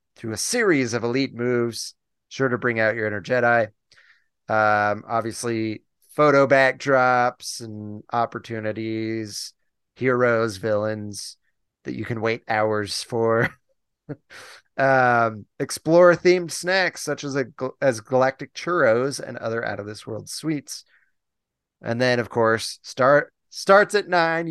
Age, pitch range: 30-49, 110-140 Hz